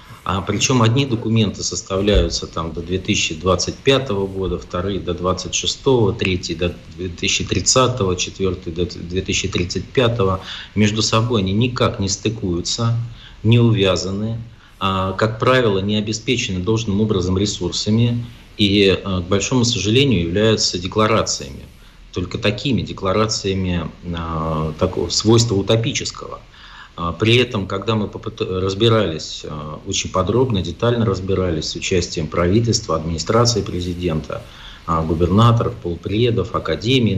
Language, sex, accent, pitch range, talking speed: Russian, male, native, 90-110 Hz, 110 wpm